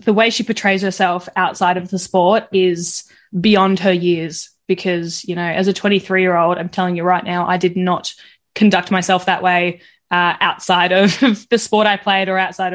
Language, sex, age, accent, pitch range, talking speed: English, female, 10-29, Australian, 175-195 Hz, 200 wpm